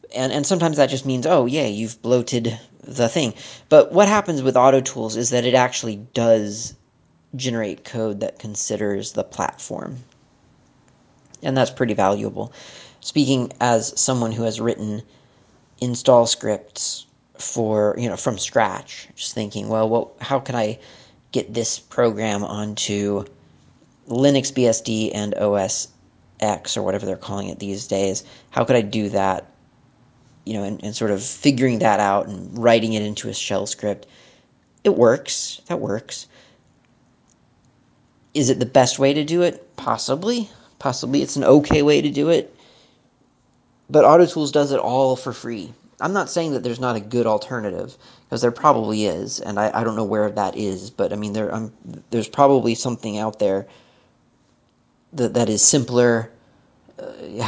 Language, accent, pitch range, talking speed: English, American, 105-130 Hz, 160 wpm